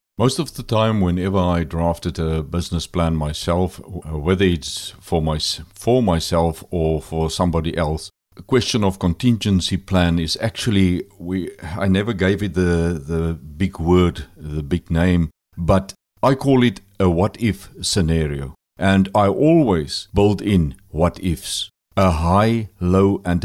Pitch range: 85-100 Hz